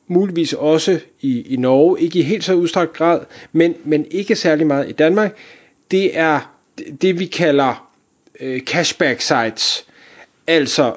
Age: 30-49